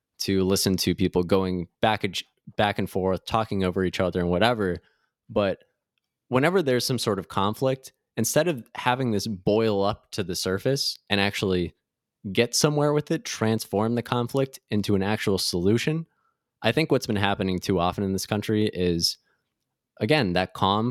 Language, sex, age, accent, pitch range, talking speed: English, male, 20-39, American, 95-125 Hz, 165 wpm